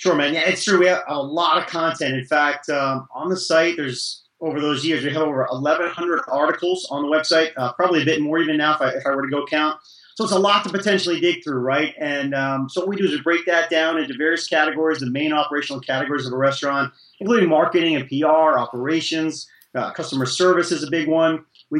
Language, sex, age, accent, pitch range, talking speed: English, male, 30-49, American, 140-170 Hz, 240 wpm